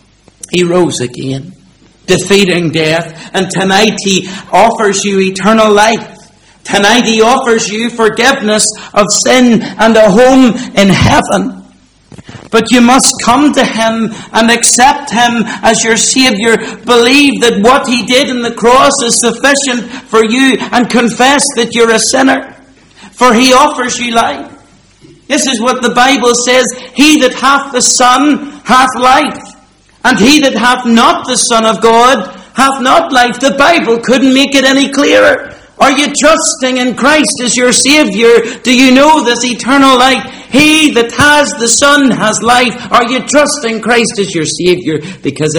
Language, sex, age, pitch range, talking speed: English, male, 50-69, 165-255 Hz, 160 wpm